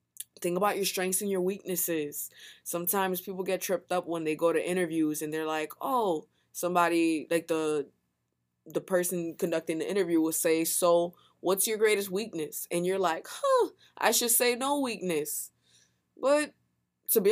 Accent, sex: American, female